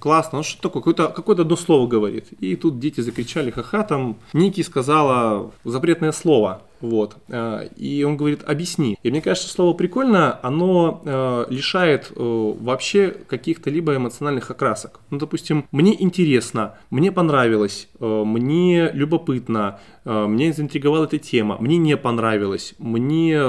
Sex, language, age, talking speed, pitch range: male, Russian, 20-39, 140 wpm, 125-175 Hz